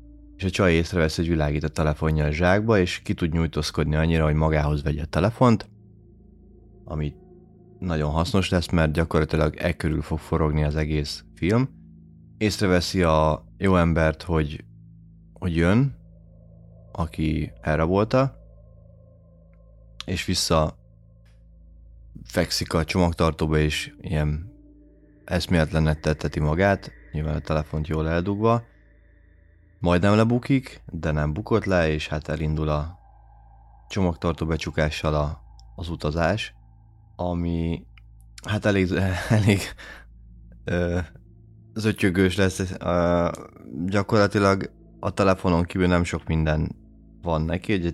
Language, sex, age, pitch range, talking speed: Hungarian, male, 30-49, 80-95 Hz, 110 wpm